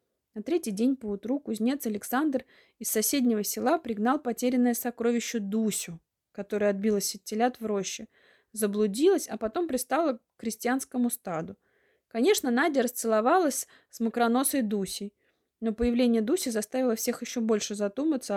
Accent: native